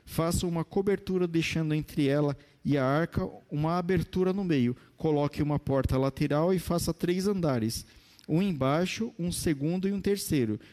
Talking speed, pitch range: 155 wpm, 145-180 Hz